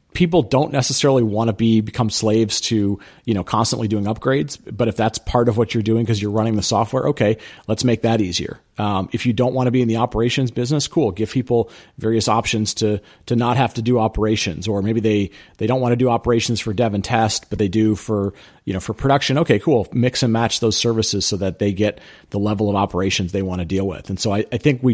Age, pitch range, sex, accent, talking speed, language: 40-59, 95-115 Hz, male, American, 245 wpm, English